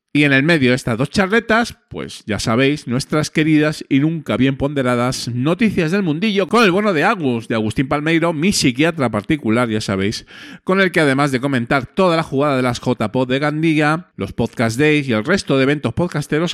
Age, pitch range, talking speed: 40-59, 120-160 Hz, 205 wpm